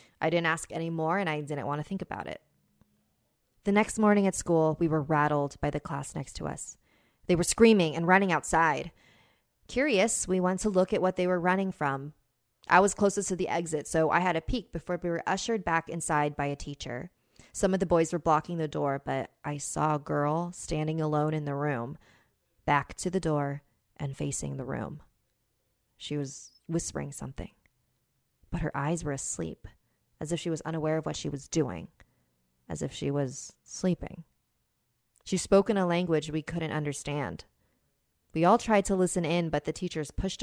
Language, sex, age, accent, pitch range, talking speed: English, female, 30-49, American, 145-180 Hz, 195 wpm